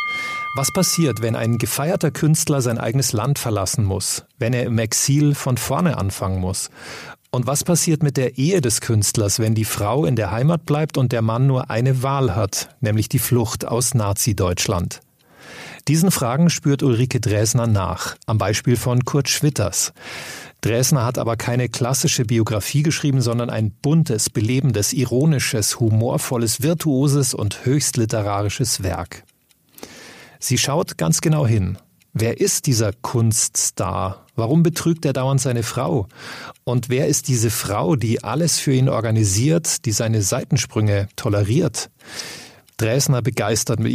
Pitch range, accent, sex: 110-140 Hz, German, male